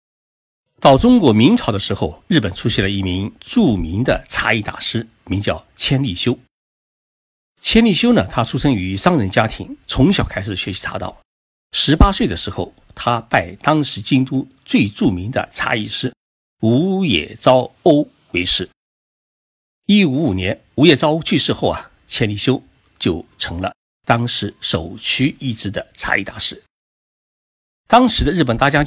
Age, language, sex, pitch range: 50-69, Chinese, male, 100-145 Hz